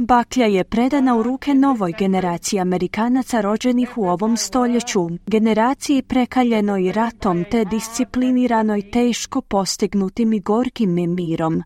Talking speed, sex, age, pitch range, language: 115 wpm, female, 30-49, 185-245 Hz, Croatian